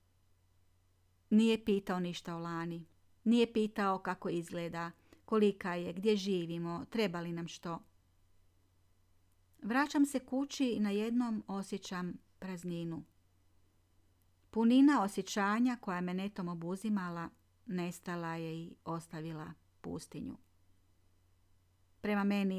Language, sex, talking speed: Croatian, female, 100 wpm